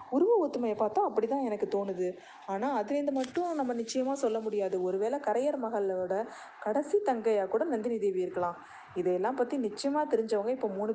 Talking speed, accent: 155 wpm, native